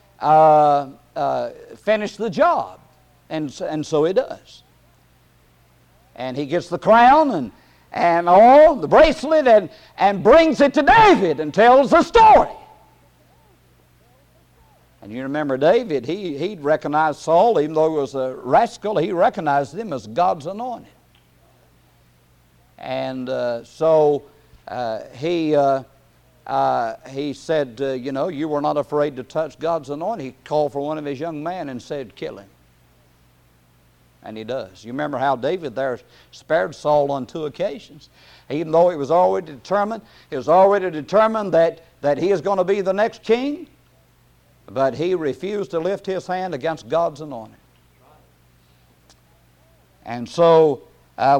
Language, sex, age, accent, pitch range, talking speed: English, male, 50-69, American, 115-190 Hz, 150 wpm